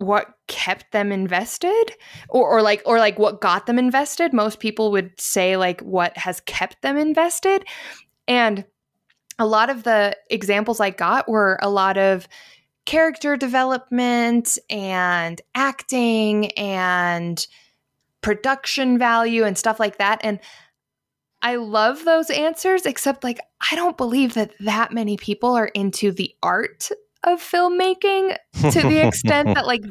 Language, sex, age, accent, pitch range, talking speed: English, female, 10-29, American, 200-270 Hz, 140 wpm